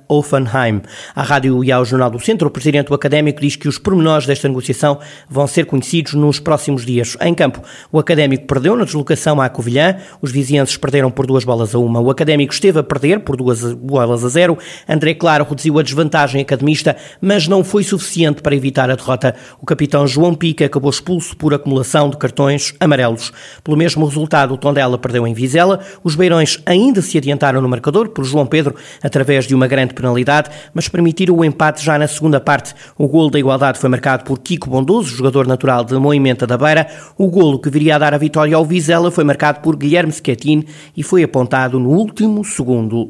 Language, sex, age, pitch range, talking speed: Portuguese, male, 20-39, 135-160 Hz, 200 wpm